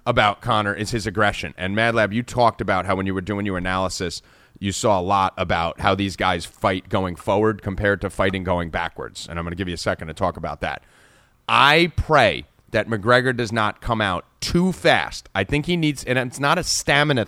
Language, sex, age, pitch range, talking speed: English, male, 30-49, 100-125 Hz, 220 wpm